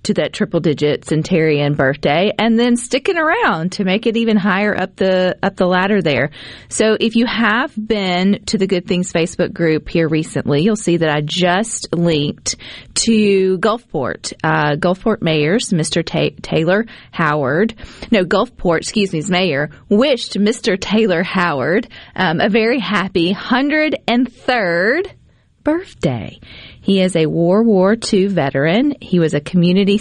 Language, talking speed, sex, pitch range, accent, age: English, 155 wpm, female, 160-220 Hz, American, 40-59